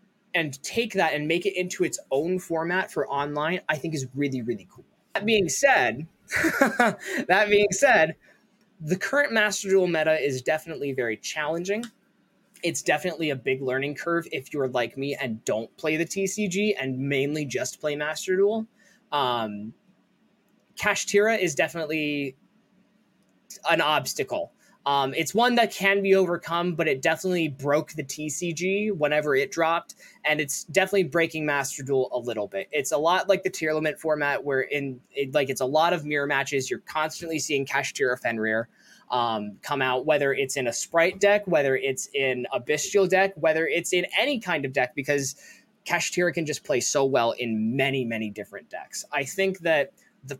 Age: 20-39